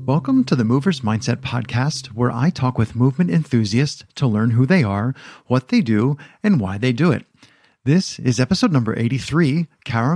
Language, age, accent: English, 40-59, American